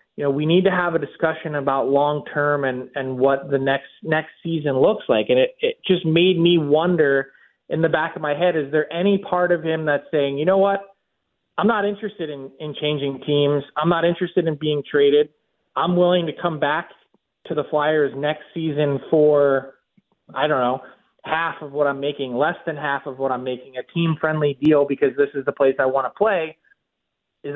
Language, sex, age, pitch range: English, male, 30-49, 140-190 Hz